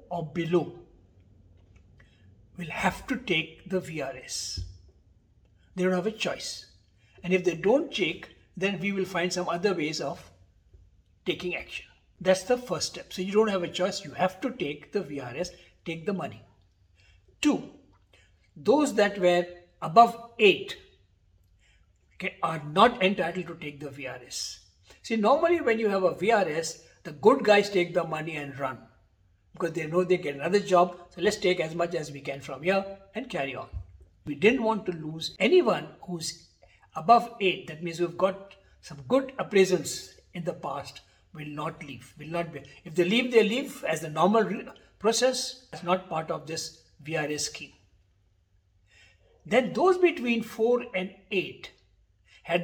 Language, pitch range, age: English, 115-190 Hz, 60-79